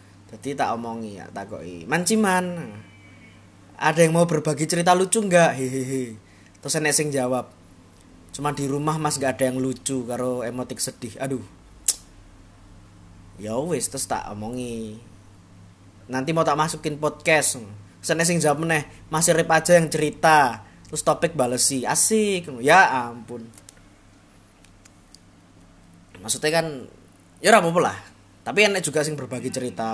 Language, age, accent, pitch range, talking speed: Indonesian, 20-39, native, 95-145 Hz, 125 wpm